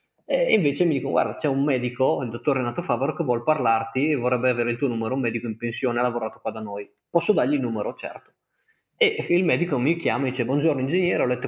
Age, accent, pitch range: 20-39, native, 115-145 Hz